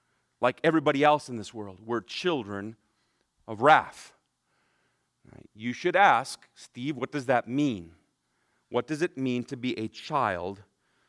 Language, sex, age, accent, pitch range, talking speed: English, male, 40-59, American, 120-150 Hz, 140 wpm